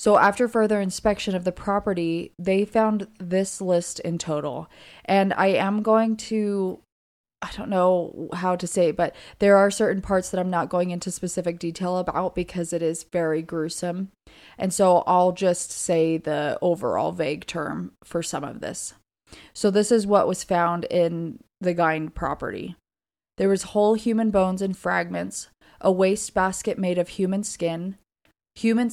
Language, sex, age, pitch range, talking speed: English, female, 20-39, 175-205 Hz, 170 wpm